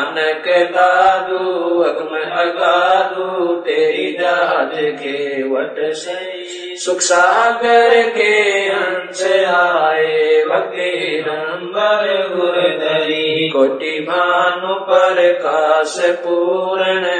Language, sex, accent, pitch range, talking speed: Hindi, male, native, 155-190 Hz, 75 wpm